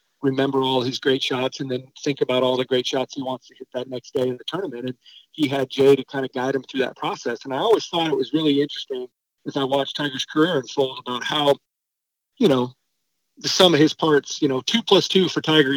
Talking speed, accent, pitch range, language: 245 wpm, American, 135-160 Hz, English